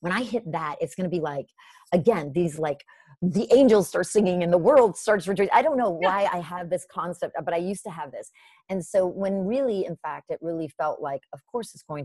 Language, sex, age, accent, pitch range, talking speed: English, female, 30-49, American, 150-205 Hz, 240 wpm